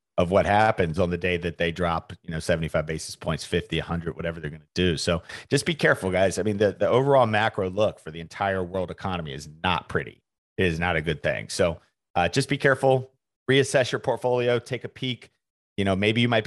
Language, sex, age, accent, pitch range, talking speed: English, male, 40-59, American, 90-110 Hz, 230 wpm